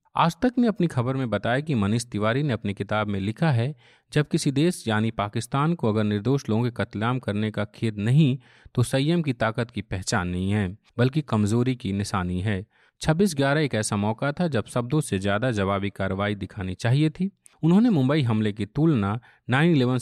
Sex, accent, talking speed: male, native, 200 wpm